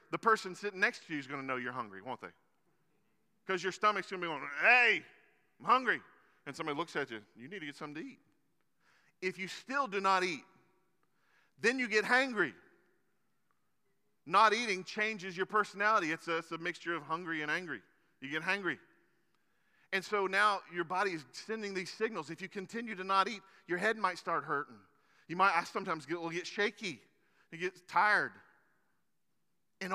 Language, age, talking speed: English, 40-59, 190 wpm